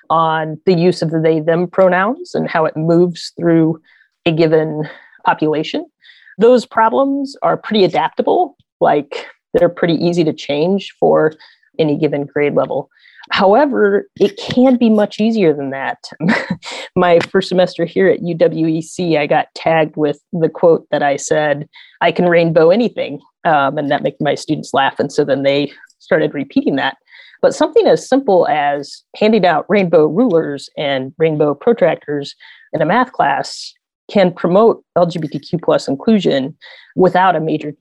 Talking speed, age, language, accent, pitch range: 155 wpm, 30-49, English, American, 155-205 Hz